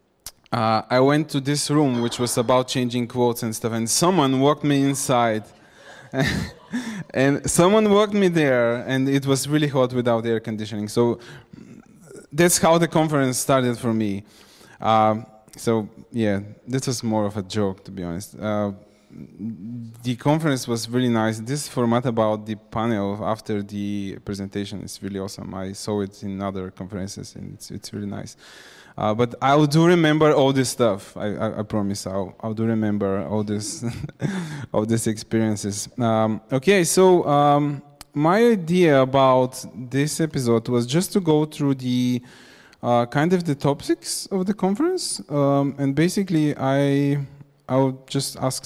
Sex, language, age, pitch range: male, Bulgarian, 20-39, 110-145 Hz